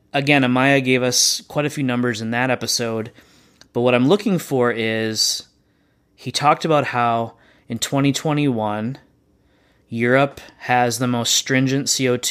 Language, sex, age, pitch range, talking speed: English, male, 20-39, 110-130 Hz, 140 wpm